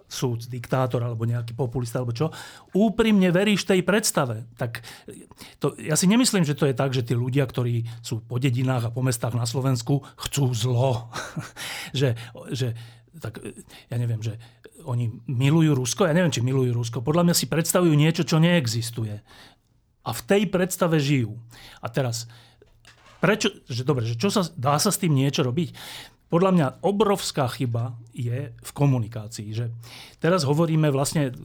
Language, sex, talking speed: Slovak, male, 160 wpm